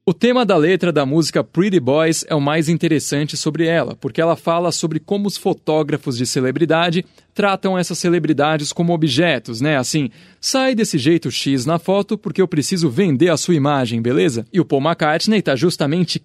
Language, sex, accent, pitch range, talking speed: Portuguese, male, Brazilian, 150-185 Hz, 185 wpm